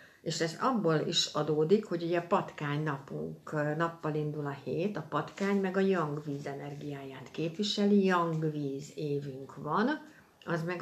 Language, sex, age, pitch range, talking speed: Hungarian, female, 60-79, 150-185 Hz, 140 wpm